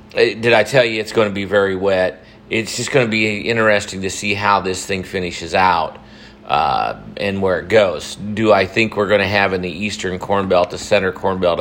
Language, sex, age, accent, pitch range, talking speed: English, male, 40-59, American, 95-110 Hz, 225 wpm